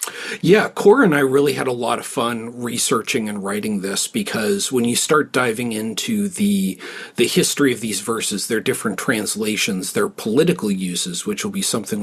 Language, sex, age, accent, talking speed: English, male, 40-59, American, 180 wpm